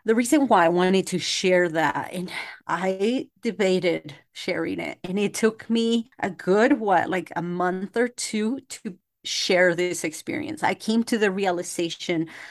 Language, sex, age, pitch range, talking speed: English, female, 30-49, 165-205 Hz, 165 wpm